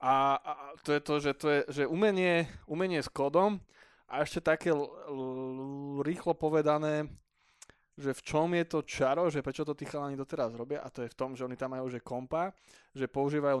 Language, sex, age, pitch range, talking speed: Slovak, male, 20-39, 130-160 Hz, 205 wpm